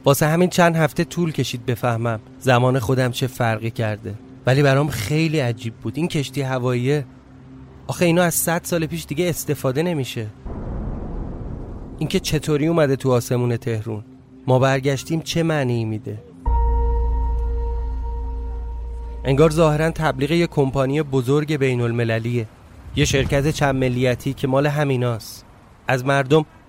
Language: Persian